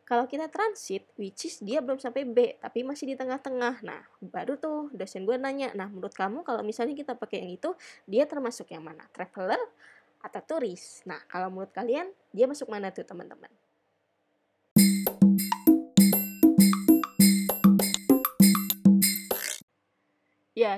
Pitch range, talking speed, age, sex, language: 195-245 Hz, 130 wpm, 20-39, female, Indonesian